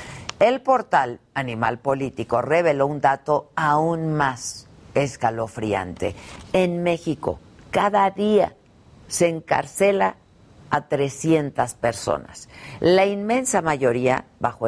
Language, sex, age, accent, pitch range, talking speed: Spanish, female, 50-69, Mexican, 125-170 Hz, 95 wpm